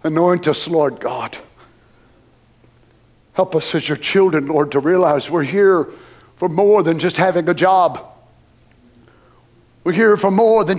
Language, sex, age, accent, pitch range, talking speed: English, male, 60-79, American, 155-205 Hz, 145 wpm